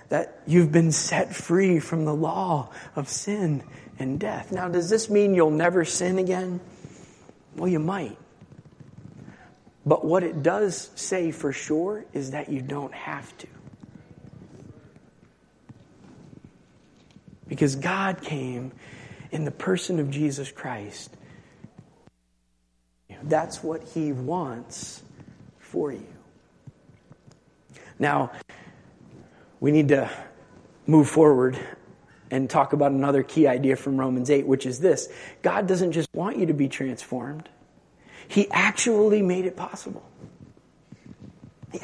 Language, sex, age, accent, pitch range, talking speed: English, male, 40-59, American, 140-205 Hz, 120 wpm